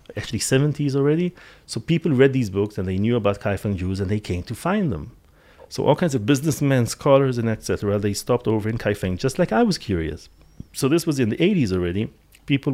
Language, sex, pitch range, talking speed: English, male, 95-130 Hz, 220 wpm